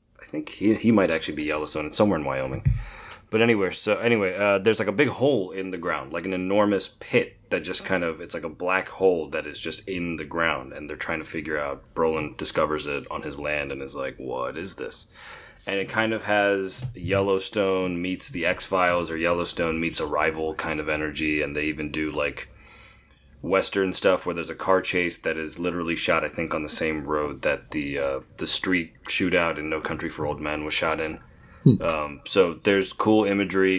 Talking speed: 215 wpm